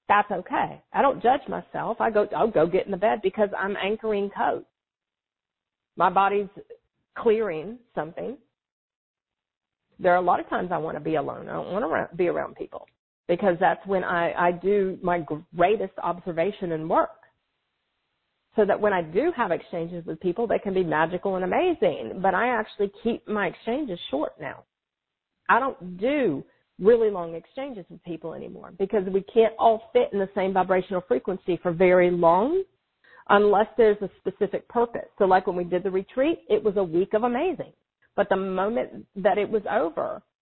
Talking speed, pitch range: 180 wpm, 180-230 Hz